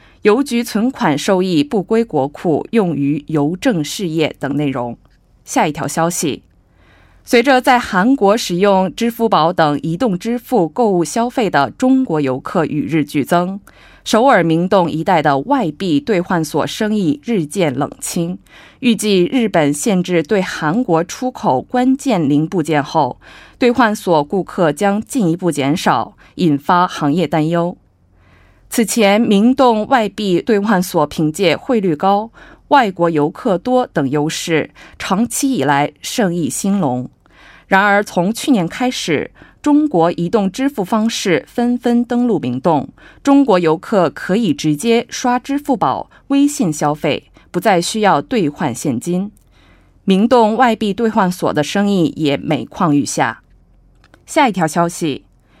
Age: 20-39